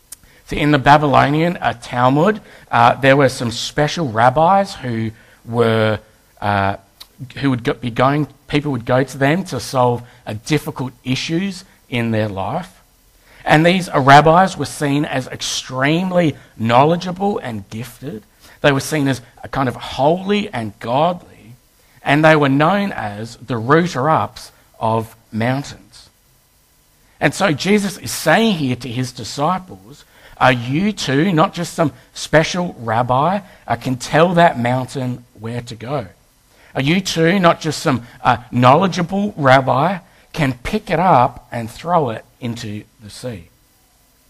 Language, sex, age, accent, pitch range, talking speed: English, male, 50-69, Australian, 120-155 Hz, 145 wpm